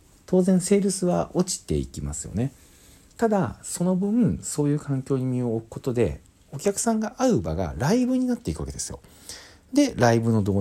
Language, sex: Japanese, male